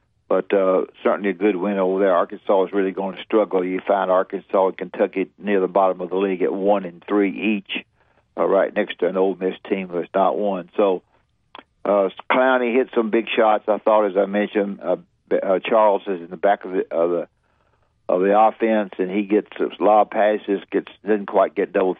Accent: American